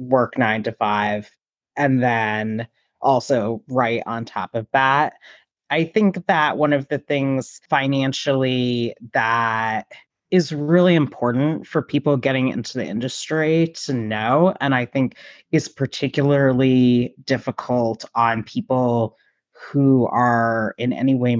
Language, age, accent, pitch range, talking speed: English, 30-49, American, 115-145 Hz, 125 wpm